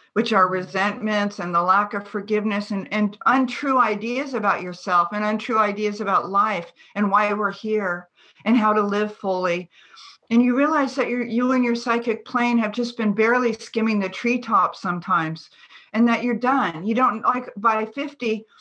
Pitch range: 190-240 Hz